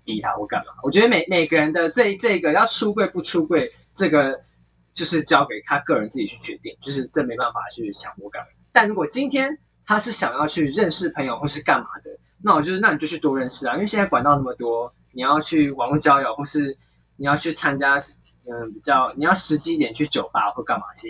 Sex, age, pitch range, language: male, 20-39, 130-190 Hz, Chinese